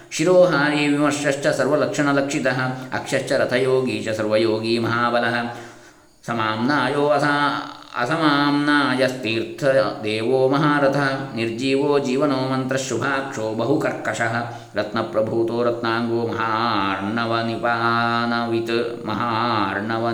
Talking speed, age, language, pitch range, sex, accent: 55 wpm, 20-39, Kannada, 115-145 Hz, male, native